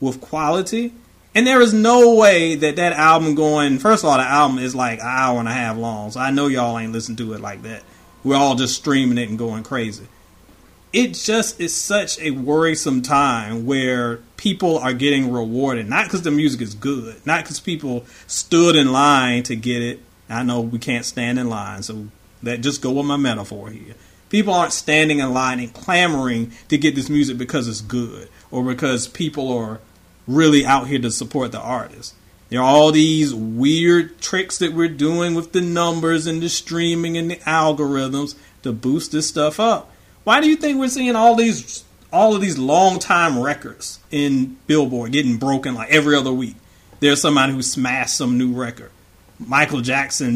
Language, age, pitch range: English, 30-49, 120-155 Hz